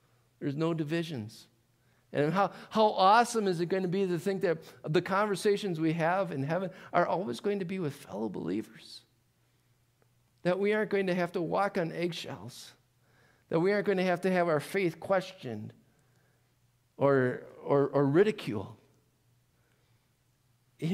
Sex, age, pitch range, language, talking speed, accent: male, 50-69, 125-185 Hz, English, 160 wpm, American